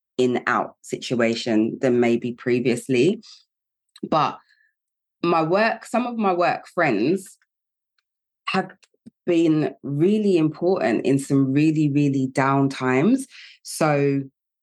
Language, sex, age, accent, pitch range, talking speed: English, female, 20-39, British, 125-145 Hz, 105 wpm